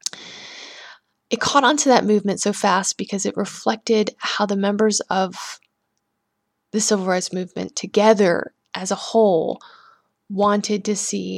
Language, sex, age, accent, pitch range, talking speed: English, female, 20-39, American, 200-245 Hz, 135 wpm